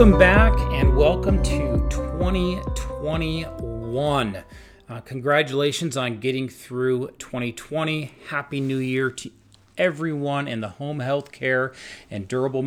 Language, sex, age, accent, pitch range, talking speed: English, male, 40-59, American, 110-140 Hz, 115 wpm